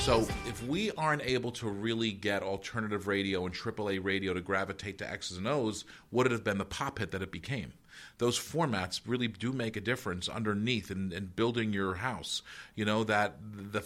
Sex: male